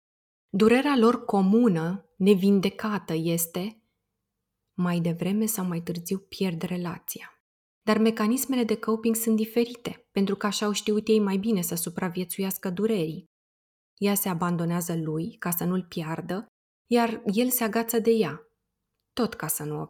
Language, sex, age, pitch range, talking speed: Romanian, female, 20-39, 175-215 Hz, 145 wpm